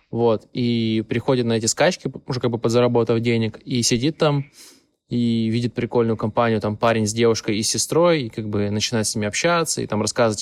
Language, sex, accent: Russian, male, native